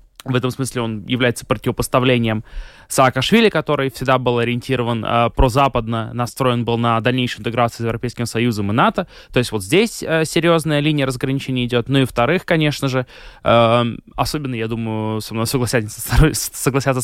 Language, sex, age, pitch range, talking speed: Russian, male, 20-39, 120-140 Hz, 155 wpm